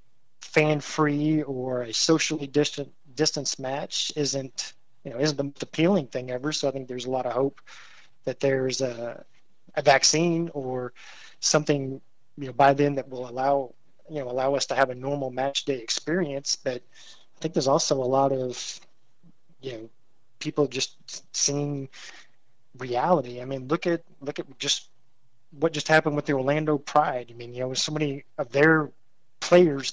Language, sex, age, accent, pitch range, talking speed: English, male, 20-39, American, 130-150 Hz, 175 wpm